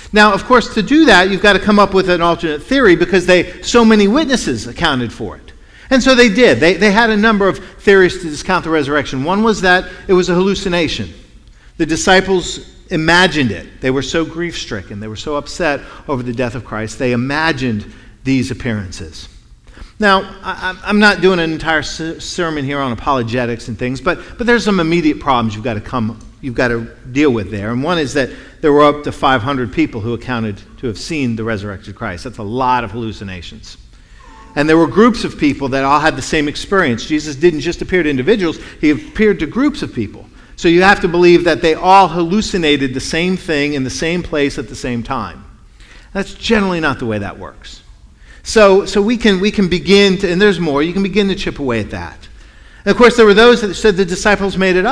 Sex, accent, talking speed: male, American, 220 wpm